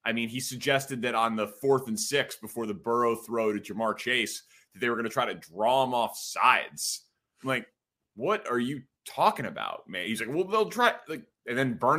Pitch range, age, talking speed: 110-145 Hz, 30-49, 225 wpm